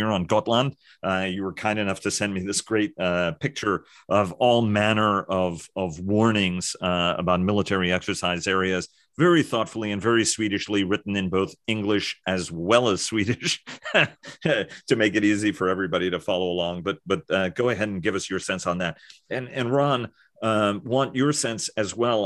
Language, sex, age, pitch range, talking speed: English, male, 40-59, 90-105 Hz, 185 wpm